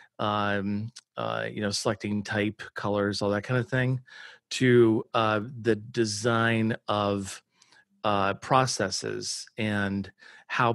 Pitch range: 105-120 Hz